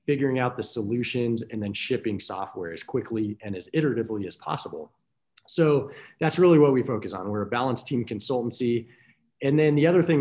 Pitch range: 105-125 Hz